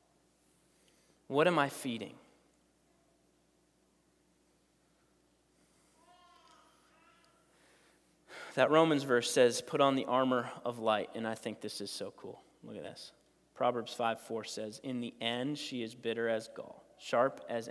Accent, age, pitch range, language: American, 30-49, 115-150 Hz, English